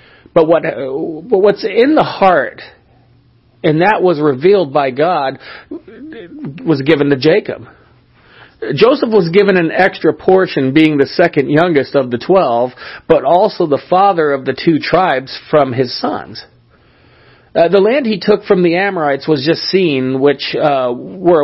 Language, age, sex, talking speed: English, 40-59, male, 155 wpm